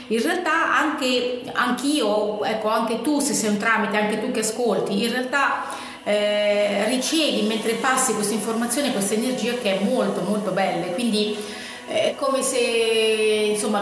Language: Italian